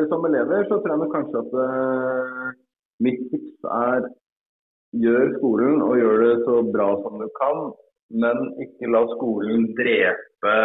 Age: 30-49